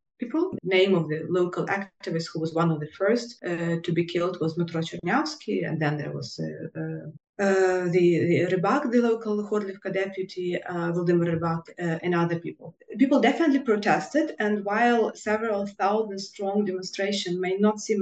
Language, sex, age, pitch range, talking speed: English, female, 20-39, 175-215 Hz, 175 wpm